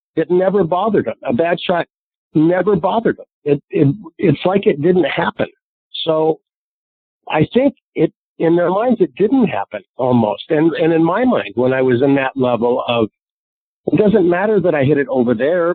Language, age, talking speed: English, 50-69, 185 wpm